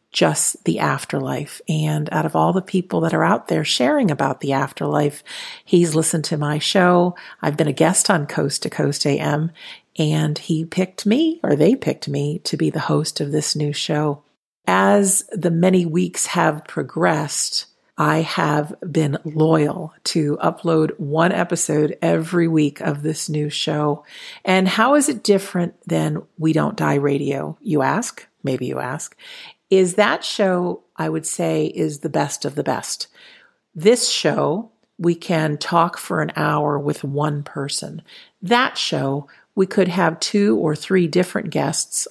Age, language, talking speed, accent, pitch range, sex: 50-69, English, 165 wpm, American, 150-185 Hz, female